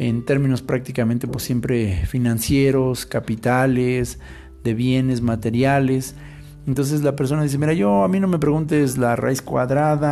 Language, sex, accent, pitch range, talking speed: Spanish, male, Mexican, 115-145 Hz, 135 wpm